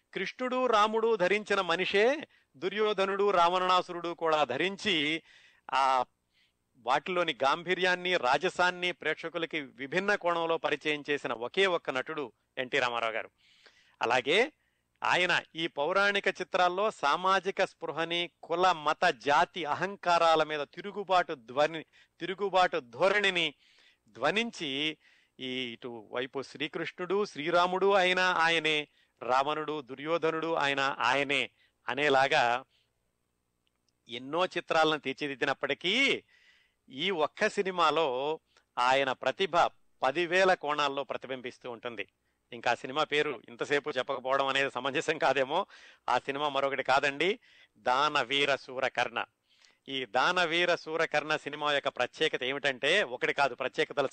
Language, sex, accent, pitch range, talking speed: Telugu, male, native, 135-180 Hz, 100 wpm